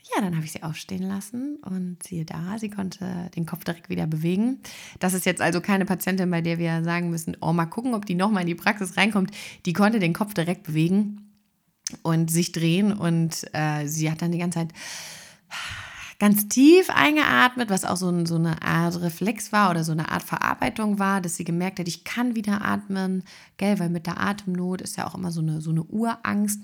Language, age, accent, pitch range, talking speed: German, 30-49, German, 170-210 Hz, 215 wpm